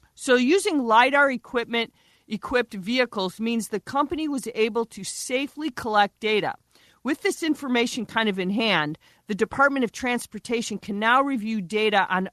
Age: 40-59